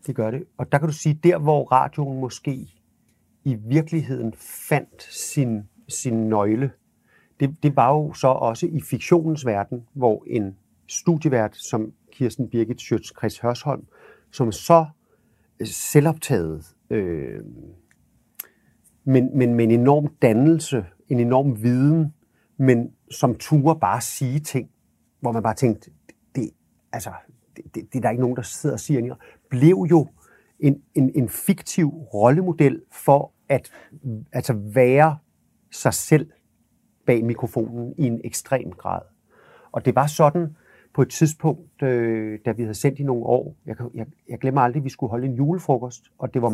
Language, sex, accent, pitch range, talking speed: Danish, male, native, 115-150 Hz, 145 wpm